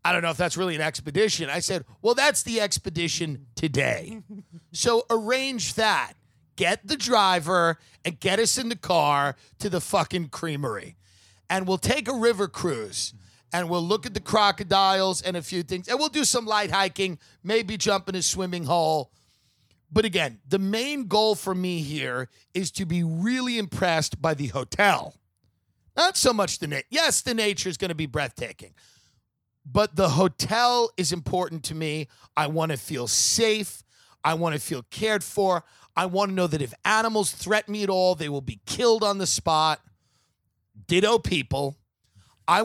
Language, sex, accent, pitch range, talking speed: English, male, American, 145-205 Hz, 180 wpm